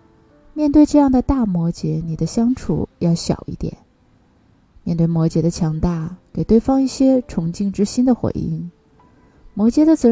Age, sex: 20-39, female